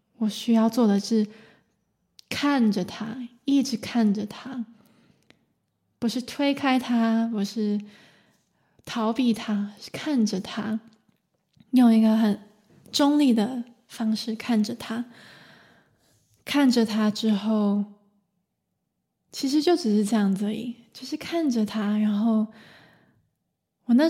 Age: 20-39